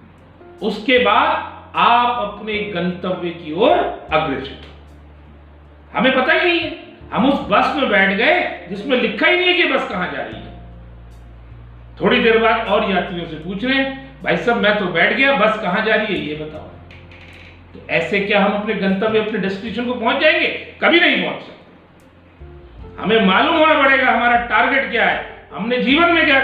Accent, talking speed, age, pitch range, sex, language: native, 180 wpm, 40-59, 165-255 Hz, male, Hindi